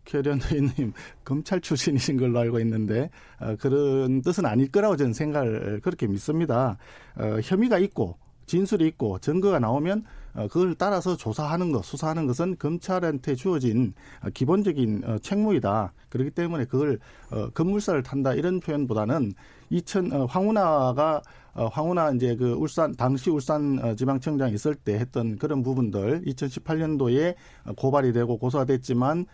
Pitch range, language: 125-175 Hz, Korean